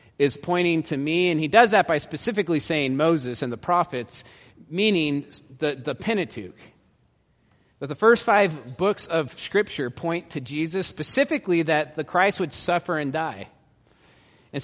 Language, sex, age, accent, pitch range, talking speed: English, male, 30-49, American, 125-170 Hz, 155 wpm